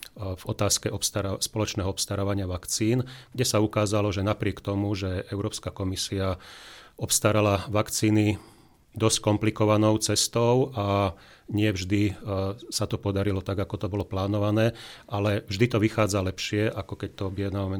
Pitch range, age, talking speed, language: 95-105 Hz, 40-59, 140 wpm, Slovak